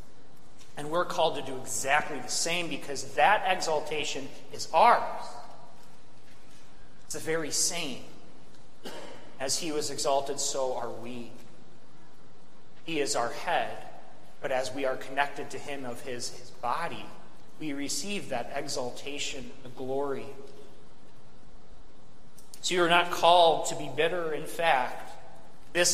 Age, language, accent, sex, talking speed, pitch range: 30-49, English, American, male, 125 wpm, 135-175 Hz